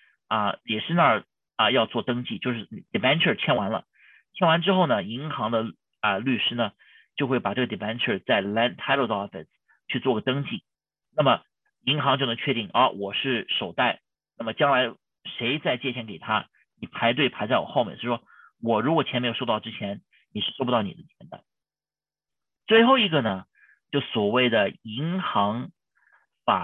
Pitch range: 120-185 Hz